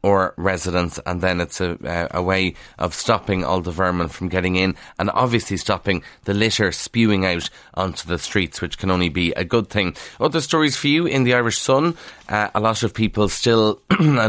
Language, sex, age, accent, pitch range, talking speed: English, male, 30-49, Irish, 95-110 Hz, 200 wpm